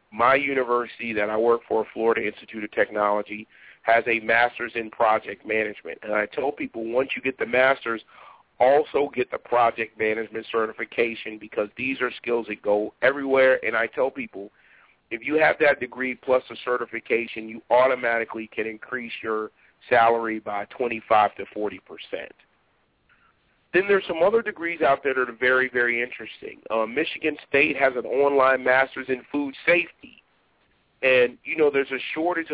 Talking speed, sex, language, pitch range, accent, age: 160 wpm, male, English, 115-135 Hz, American, 40-59